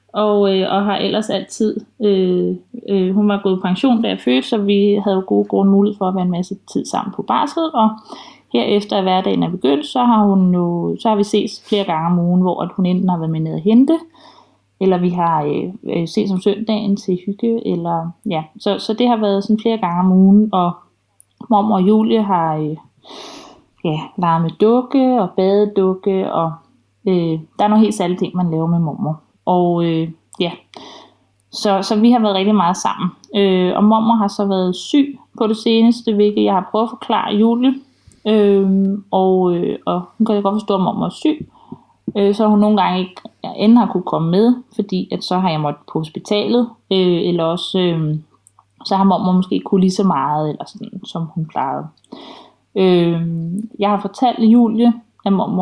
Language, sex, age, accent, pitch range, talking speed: Danish, female, 30-49, native, 175-215 Hz, 205 wpm